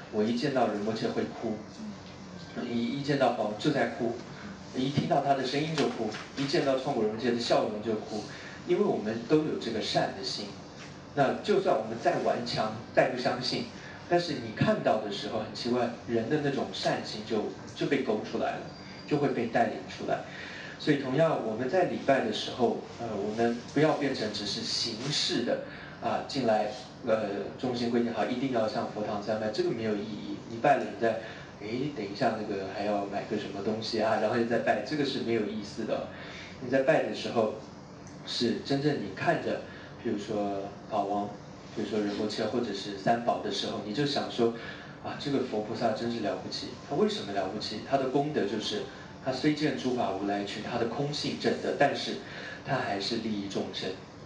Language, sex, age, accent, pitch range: English, male, 30-49, Chinese, 105-140 Hz